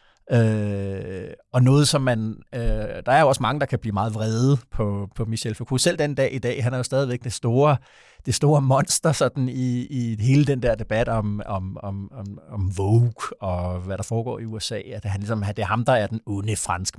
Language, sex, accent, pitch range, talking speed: Danish, male, native, 115-140 Hz, 225 wpm